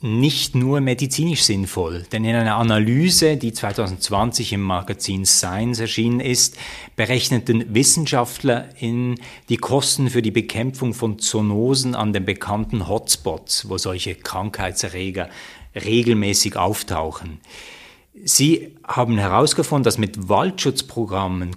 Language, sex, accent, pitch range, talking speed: German, male, German, 100-125 Hz, 110 wpm